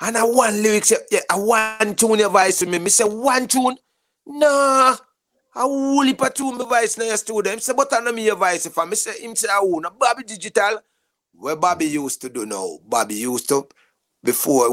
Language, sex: English, male